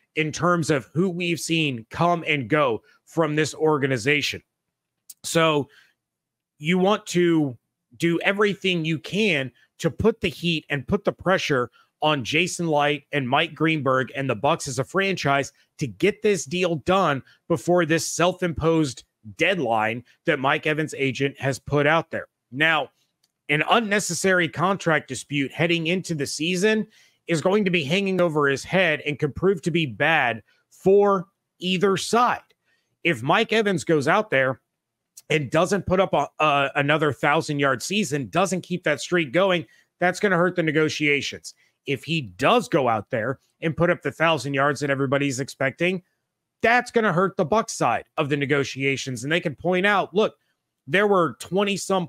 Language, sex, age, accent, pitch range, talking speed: English, male, 30-49, American, 140-180 Hz, 165 wpm